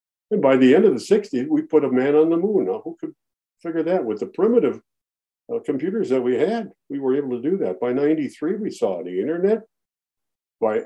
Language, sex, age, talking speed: English, male, 60-79, 220 wpm